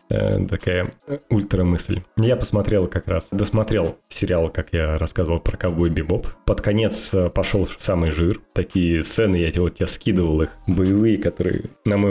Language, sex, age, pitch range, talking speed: Russian, male, 20-39, 85-105 Hz, 150 wpm